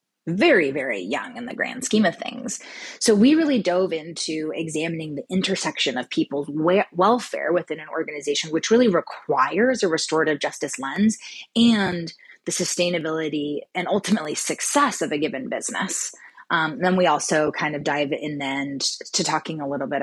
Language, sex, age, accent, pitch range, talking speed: English, female, 20-39, American, 155-210 Hz, 165 wpm